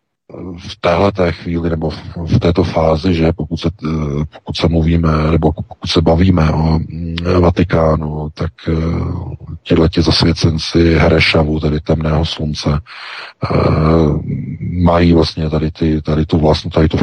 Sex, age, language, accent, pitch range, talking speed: male, 40-59, Czech, native, 80-100 Hz, 130 wpm